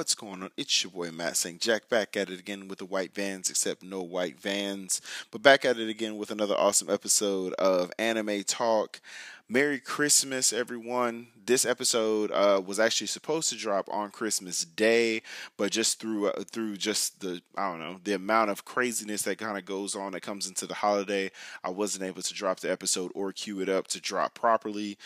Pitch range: 95-115 Hz